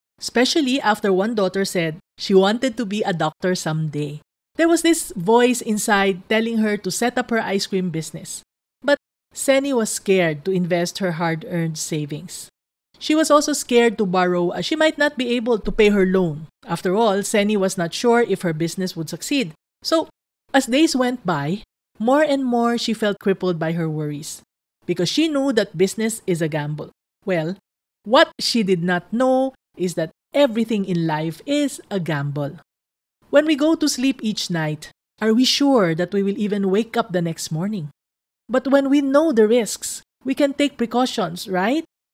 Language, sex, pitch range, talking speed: English, female, 180-250 Hz, 185 wpm